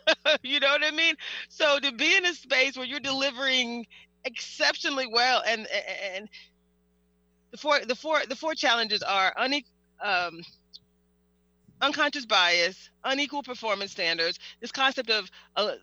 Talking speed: 140 wpm